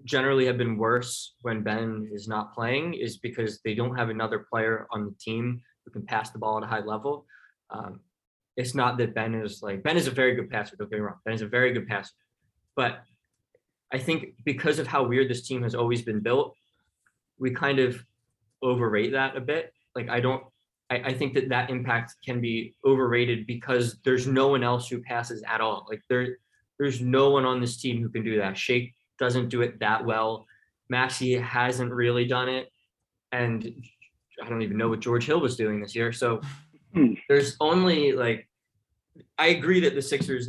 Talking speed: 200 wpm